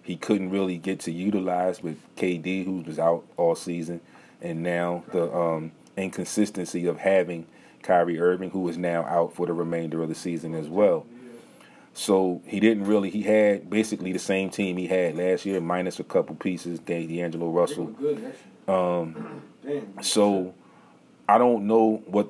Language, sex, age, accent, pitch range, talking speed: English, male, 30-49, American, 85-95 Hz, 160 wpm